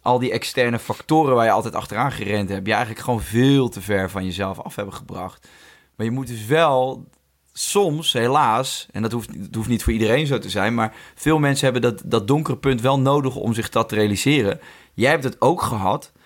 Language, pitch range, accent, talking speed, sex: Dutch, 110-145 Hz, Dutch, 215 wpm, male